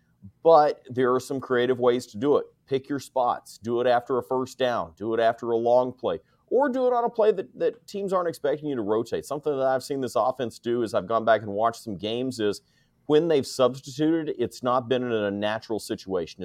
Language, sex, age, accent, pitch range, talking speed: English, male, 30-49, American, 110-145 Hz, 235 wpm